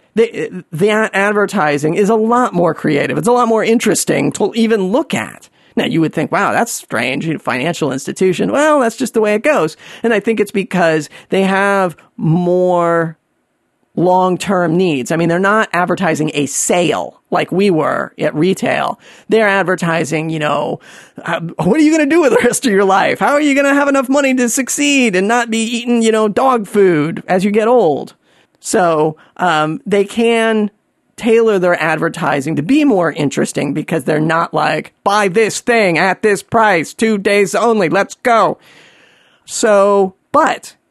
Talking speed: 180 wpm